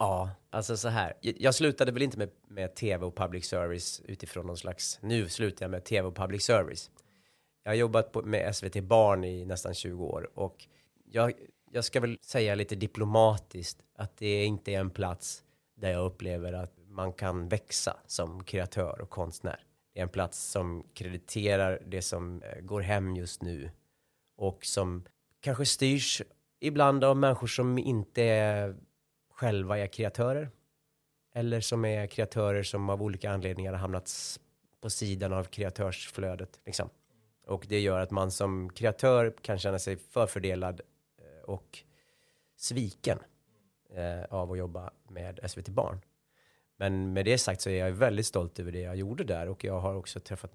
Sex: male